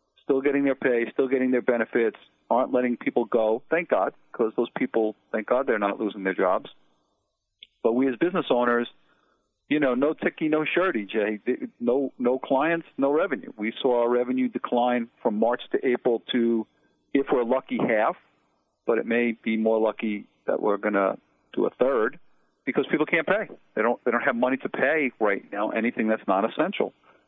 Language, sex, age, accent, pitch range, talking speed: English, male, 50-69, American, 110-140 Hz, 185 wpm